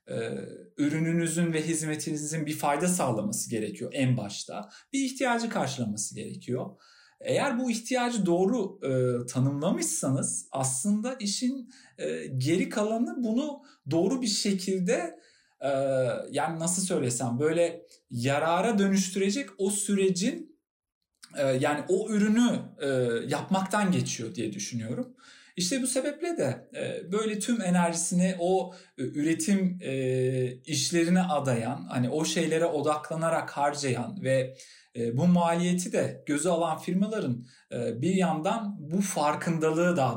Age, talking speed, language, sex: 50-69, 110 wpm, Turkish, male